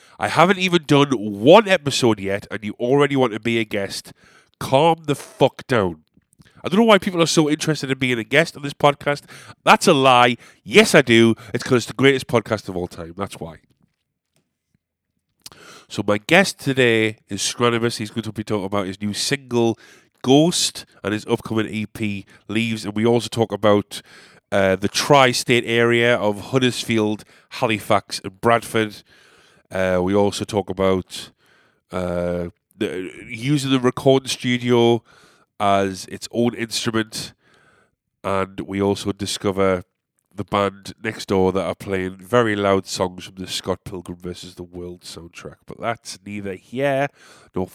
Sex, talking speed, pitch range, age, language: male, 160 wpm, 100-135 Hz, 30-49, English